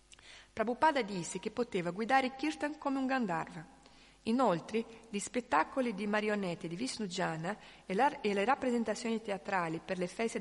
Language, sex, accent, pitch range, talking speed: Italian, female, native, 180-235 Hz, 135 wpm